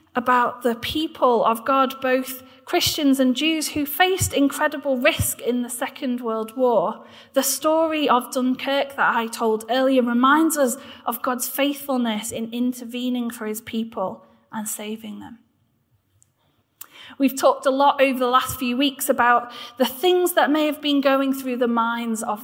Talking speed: 160 wpm